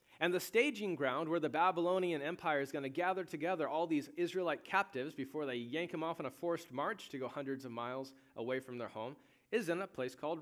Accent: American